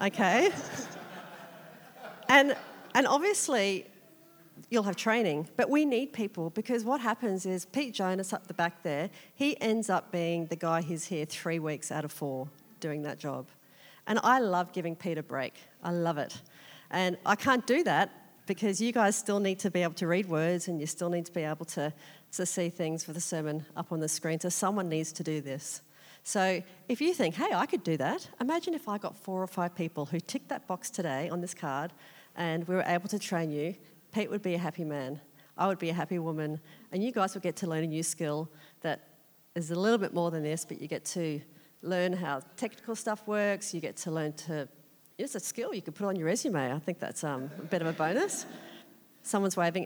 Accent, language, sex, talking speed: Australian, English, female, 220 wpm